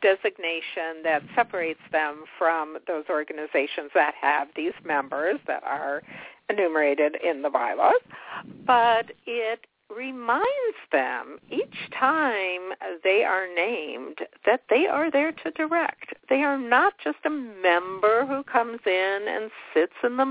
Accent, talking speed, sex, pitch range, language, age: American, 135 wpm, female, 170-285 Hz, English, 50-69